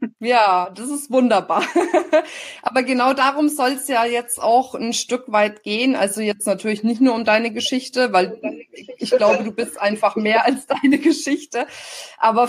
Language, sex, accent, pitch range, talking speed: German, female, German, 200-245 Hz, 170 wpm